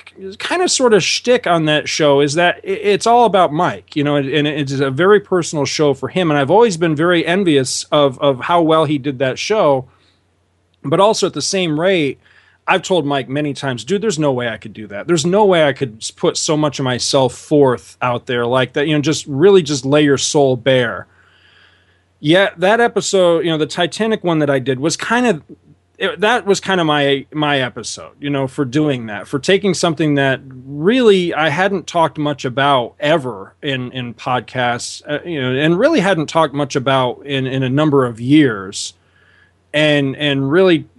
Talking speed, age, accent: 205 wpm, 30-49, American